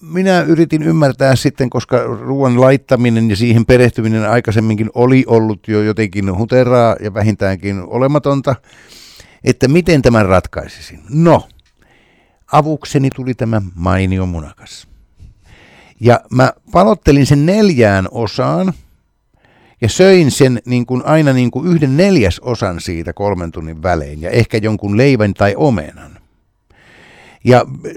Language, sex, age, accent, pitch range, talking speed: Finnish, male, 60-79, native, 100-150 Hz, 120 wpm